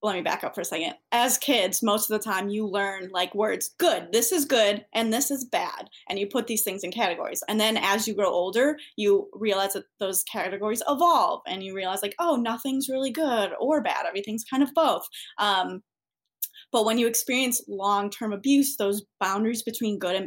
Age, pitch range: 20-39, 195-260 Hz